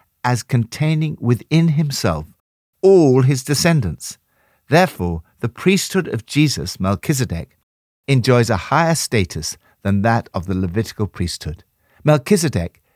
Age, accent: 60-79, British